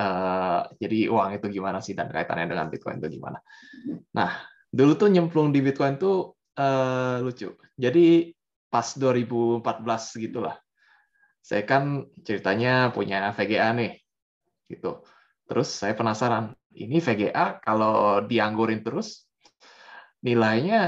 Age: 20-39